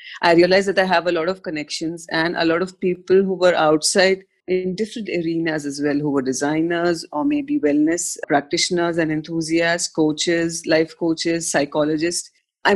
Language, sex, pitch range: English, female, 155-195 Hz